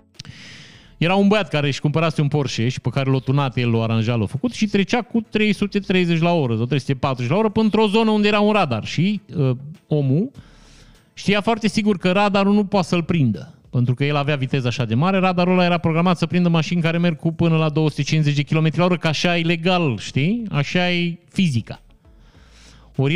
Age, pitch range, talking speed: 30-49, 130-185 Hz, 205 wpm